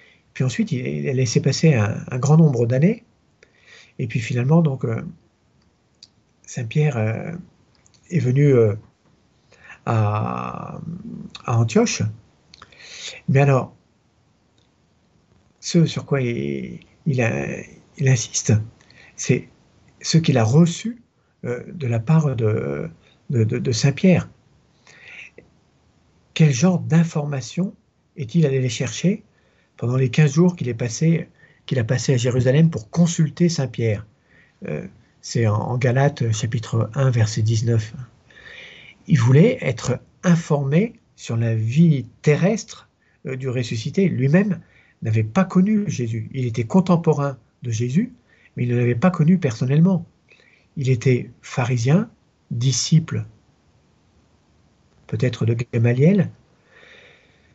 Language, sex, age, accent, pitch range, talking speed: French, male, 60-79, French, 120-165 Hz, 115 wpm